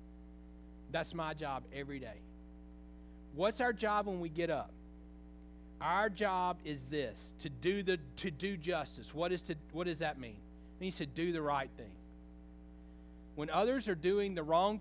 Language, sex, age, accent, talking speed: English, male, 40-59, American, 170 wpm